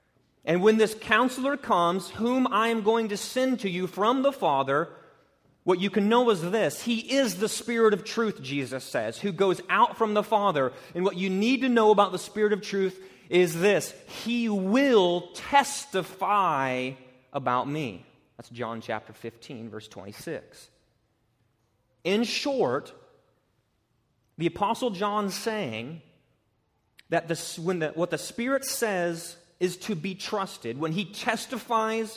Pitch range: 175-235 Hz